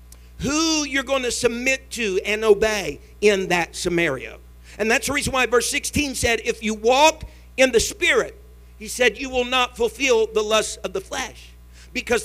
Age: 50-69